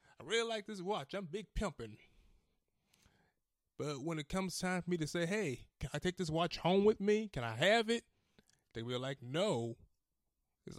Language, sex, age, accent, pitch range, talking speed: English, male, 20-39, American, 130-185 Hz, 195 wpm